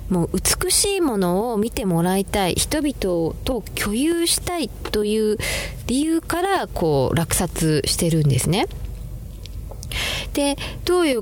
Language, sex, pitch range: Japanese, female, 150-235 Hz